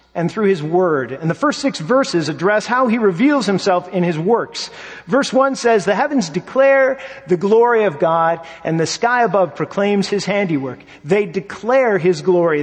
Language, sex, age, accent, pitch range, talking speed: English, male, 50-69, American, 150-215 Hz, 180 wpm